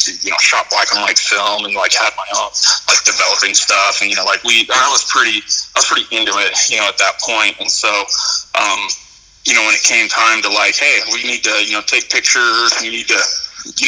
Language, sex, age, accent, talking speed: English, male, 30-49, American, 245 wpm